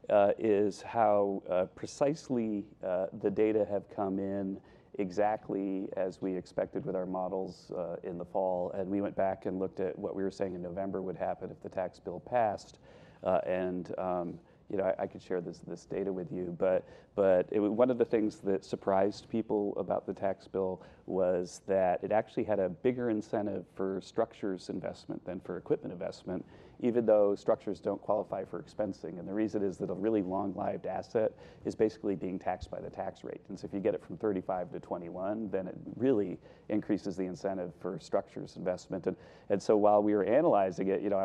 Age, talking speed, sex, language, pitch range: 40-59, 200 wpm, male, English, 95-110 Hz